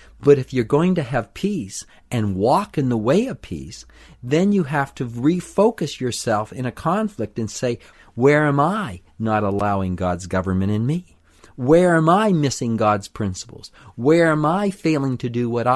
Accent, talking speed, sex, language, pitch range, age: American, 180 wpm, male, English, 110-160 Hz, 50-69